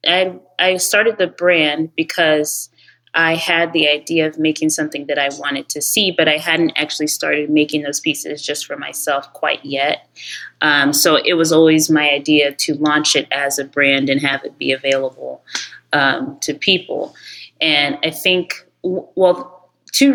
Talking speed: 170 wpm